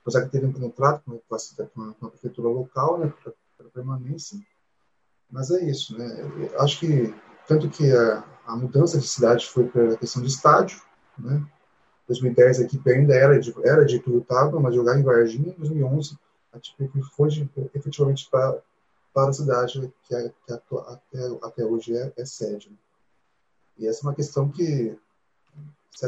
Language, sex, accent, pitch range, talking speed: Portuguese, male, Brazilian, 120-145 Hz, 175 wpm